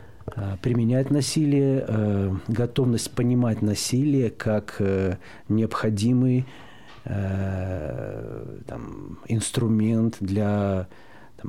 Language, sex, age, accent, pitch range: Russian, male, 50-69, native, 95-115 Hz